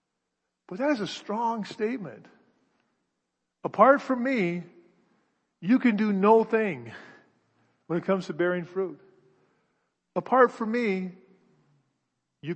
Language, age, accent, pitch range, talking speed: English, 50-69, American, 155-200 Hz, 115 wpm